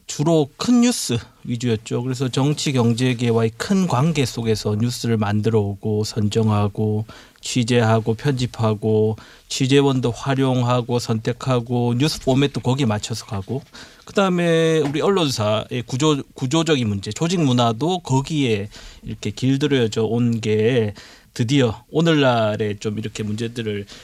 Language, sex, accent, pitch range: Korean, male, native, 110-140 Hz